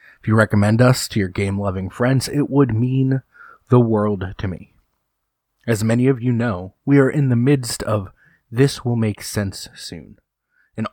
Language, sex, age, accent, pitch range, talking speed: English, male, 30-49, American, 100-130 Hz, 175 wpm